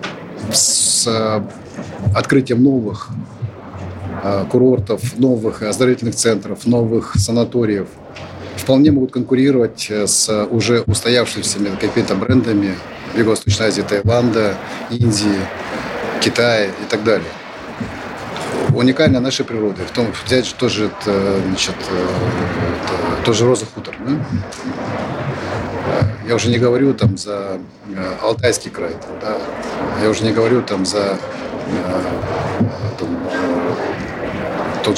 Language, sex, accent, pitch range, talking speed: Russian, male, native, 105-125 Hz, 90 wpm